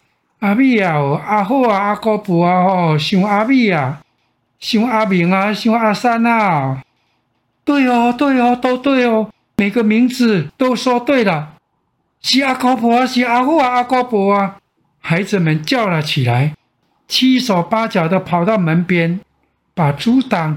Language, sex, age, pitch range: Chinese, male, 60-79, 145-215 Hz